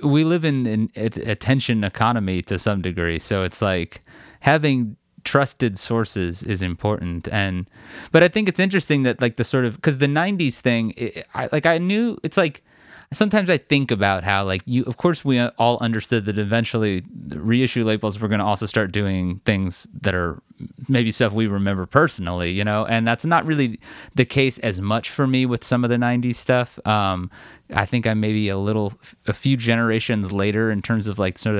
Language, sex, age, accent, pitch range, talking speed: English, male, 30-49, American, 100-125 Hz, 190 wpm